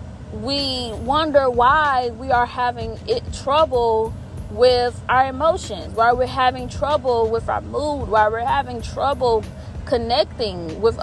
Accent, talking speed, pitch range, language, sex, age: American, 130 wpm, 235-300 Hz, English, female, 20-39